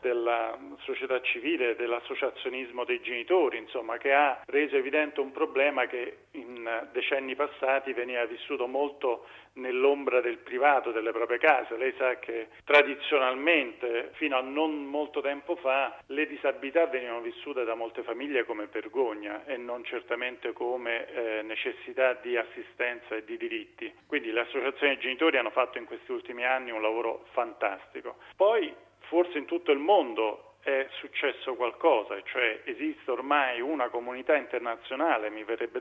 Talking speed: 145 wpm